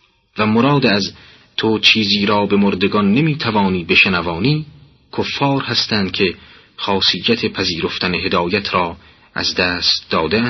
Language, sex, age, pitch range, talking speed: Persian, male, 40-59, 95-120 Hz, 120 wpm